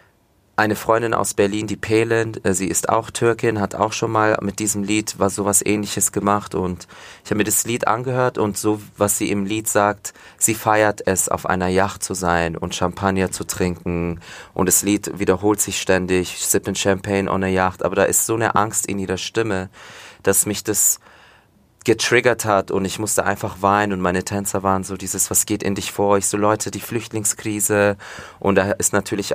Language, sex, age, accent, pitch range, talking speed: German, male, 30-49, German, 95-105 Hz, 200 wpm